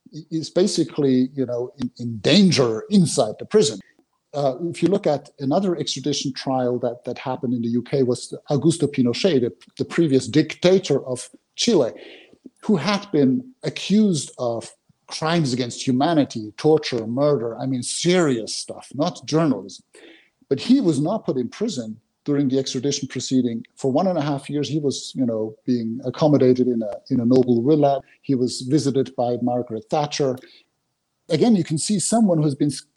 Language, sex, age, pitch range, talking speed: English, male, 50-69, 125-170 Hz, 165 wpm